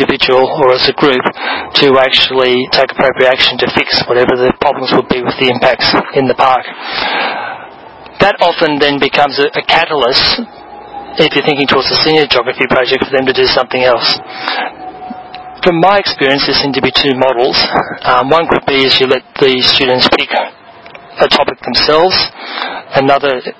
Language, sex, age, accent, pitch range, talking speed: English, male, 30-49, Australian, 125-140 Hz, 170 wpm